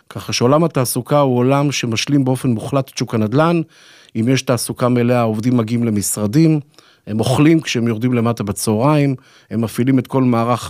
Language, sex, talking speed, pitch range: Hebrew, male, 165 wpm, 110-140 Hz